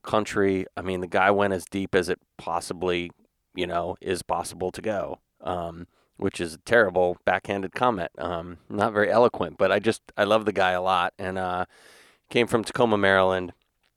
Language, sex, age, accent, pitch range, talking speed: English, male, 30-49, American, 90-105 Hz, 185 wpm